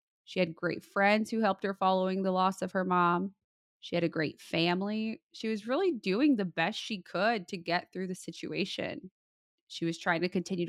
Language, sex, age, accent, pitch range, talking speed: English, female, 20-39, American, 170-210 Hz, 200 wpm